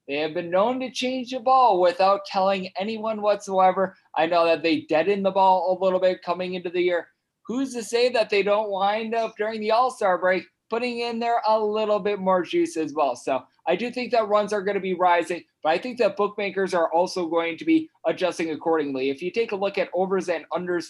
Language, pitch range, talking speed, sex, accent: English, 165-205 Hz, 230 wpm, male, American